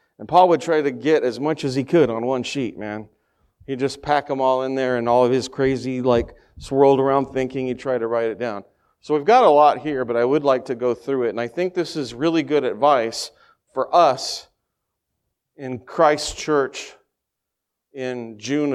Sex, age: male, 40-59